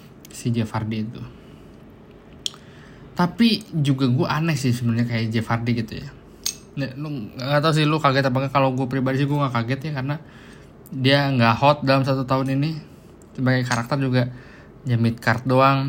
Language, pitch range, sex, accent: Indonesian, 125-155 Hz, male, native